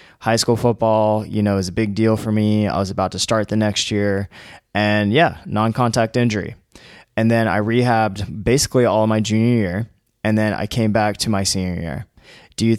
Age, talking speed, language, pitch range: 20-39, 200 wpm, English, 100-115 Hz